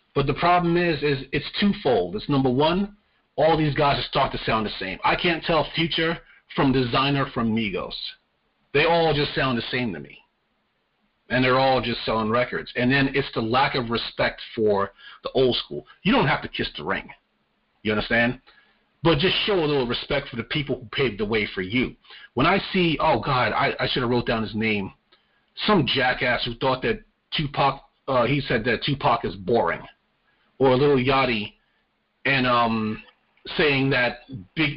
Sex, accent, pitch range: male, American, 125-160 Hz